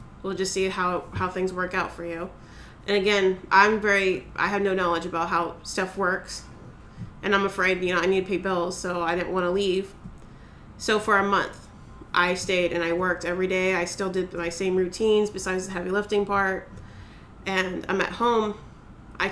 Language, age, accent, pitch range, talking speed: English, 30-49, American, 175-200 Hz, 200 wpm